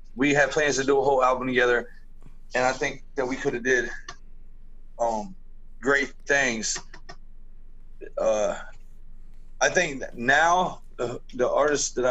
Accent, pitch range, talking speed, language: American, 120-140 Hz, 140 wpm, English